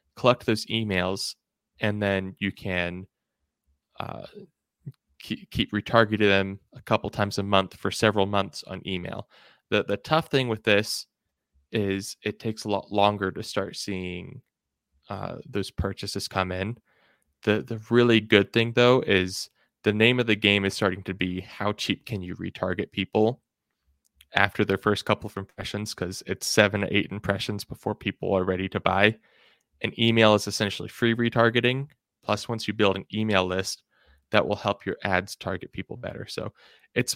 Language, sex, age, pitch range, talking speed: English, male, 20-39, 95-110 Hz, 170 wpm